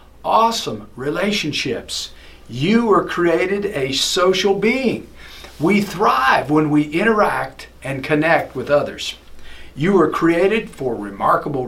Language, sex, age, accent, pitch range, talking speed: English, male, 50-69, American, 125-190 Hz, 115 wpm